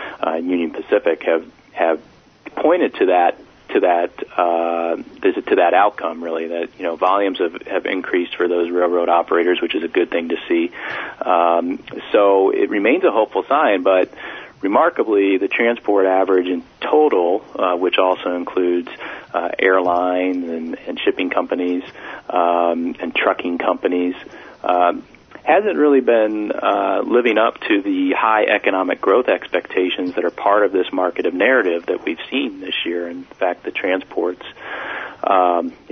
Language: English